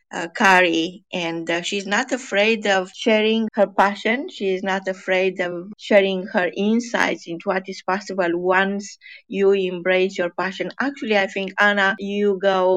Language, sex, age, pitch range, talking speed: English, female, 20-39, 180-210 Hz, 155 wpm